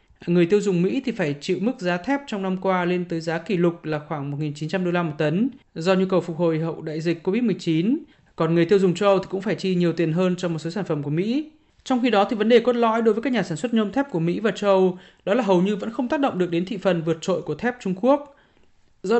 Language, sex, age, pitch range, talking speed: Vietnamese, male, 20-39, 170-220 Hz, 295 wpm